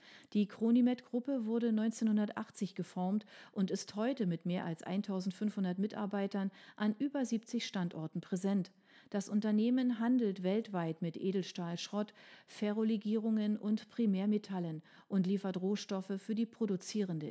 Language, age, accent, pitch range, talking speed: German, 40-59, German, 185-225 Hz, 115 wpm